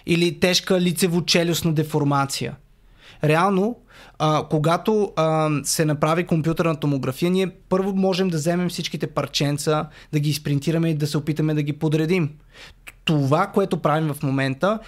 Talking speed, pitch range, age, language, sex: 135 wpm, 150-190 Hz, 20-39, Bulgarian, male